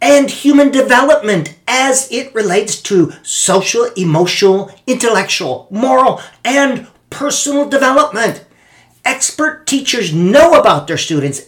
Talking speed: 105 wpm